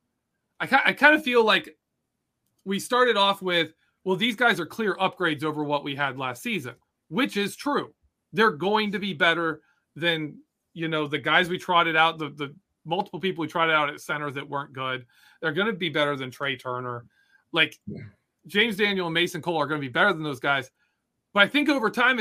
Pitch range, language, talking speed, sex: 150-195 Hz, English, 205 wpm, male